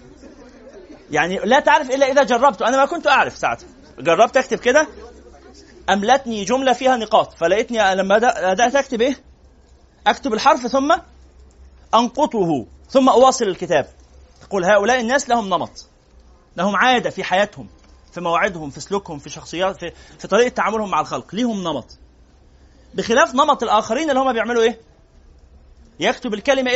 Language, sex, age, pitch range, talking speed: Arabic, male, 30-49, 170-280 Hz, 140 wpm